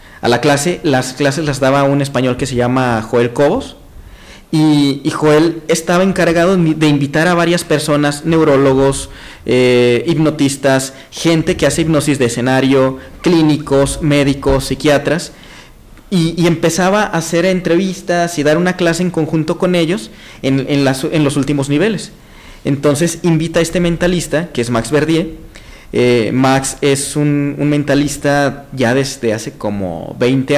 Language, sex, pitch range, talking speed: Spanish, male, 135-165 Hz, 150 wpm